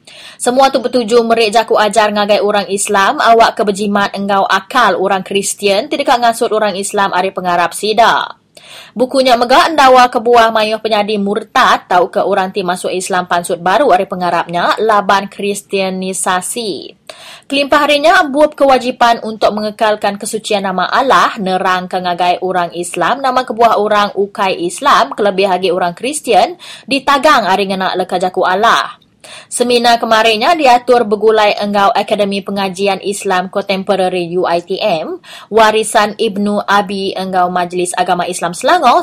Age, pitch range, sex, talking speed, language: 20-39, 190-240 Hz, female, 135 wpm, English